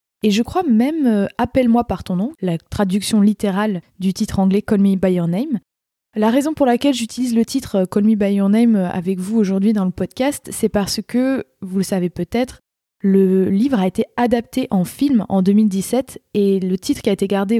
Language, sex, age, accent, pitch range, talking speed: French, female, 20-39, French, 185-230 Hz, 225 wpm